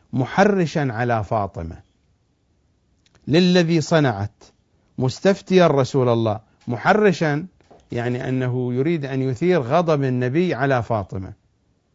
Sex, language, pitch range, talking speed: male, English, 110-175 Hz, 90 wpm